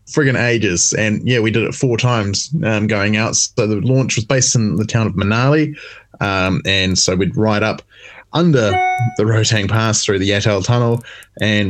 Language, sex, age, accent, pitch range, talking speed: English, male, 20-39, Australian, 105-125 Hz, 190 wpm